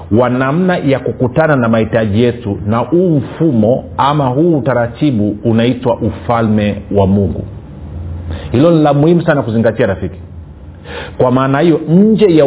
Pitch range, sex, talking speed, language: 110-150 Hz, male, 140 wpm, Swahili